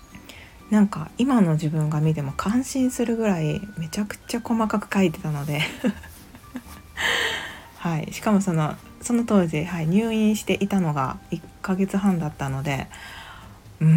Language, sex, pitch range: Japanese, female, 150-205 Hz